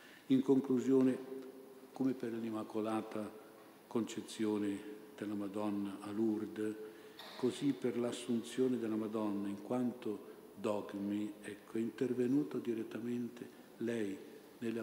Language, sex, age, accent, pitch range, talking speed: Italian, male, 50-69, native, 105-115 Hz, 95 wpm